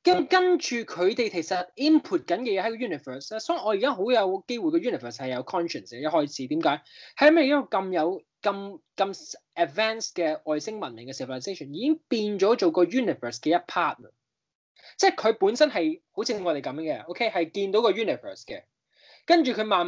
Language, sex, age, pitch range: Chinese, male, 20-39, 165-275 Hz